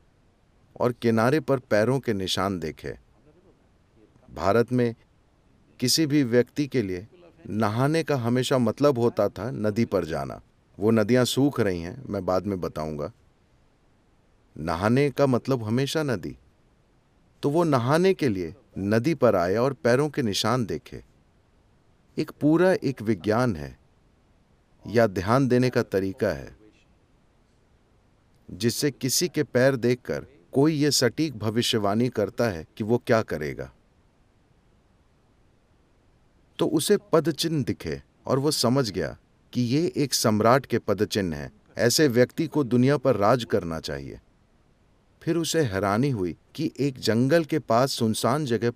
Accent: native